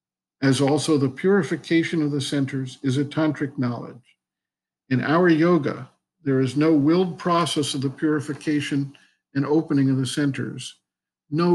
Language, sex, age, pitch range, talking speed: English, male, 50-69, 135-160 Hz, 145 wpm